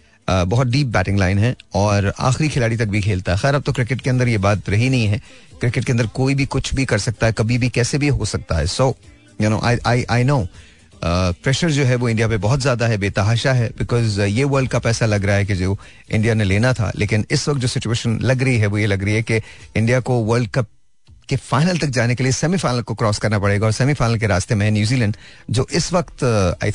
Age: 40-59